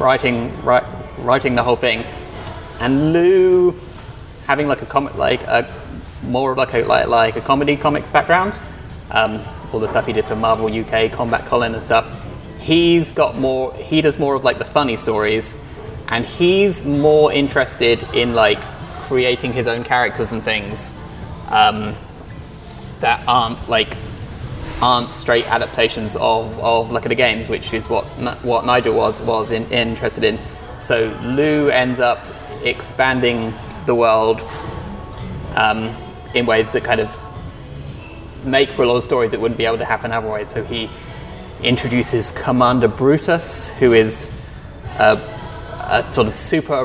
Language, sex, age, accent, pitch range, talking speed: English, male, 20-39, British, 110-130 Hz, 150 wpm